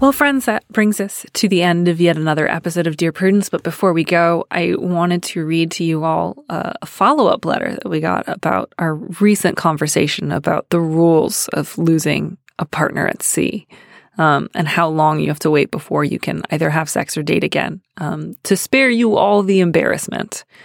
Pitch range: 160-200 Hz